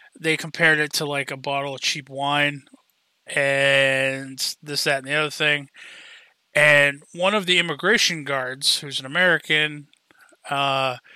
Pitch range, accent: 140-170 Hz, American